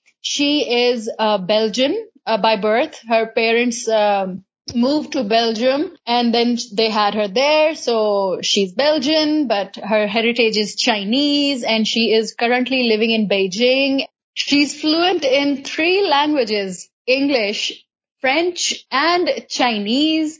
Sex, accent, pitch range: female, Indian, 225-275 Hz